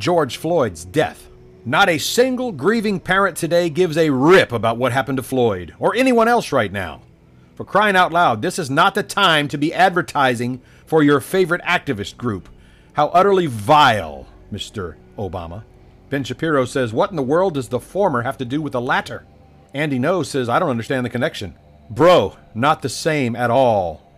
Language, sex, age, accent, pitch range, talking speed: English, male, 40-59, American, 100-160 Hz, 185 wpm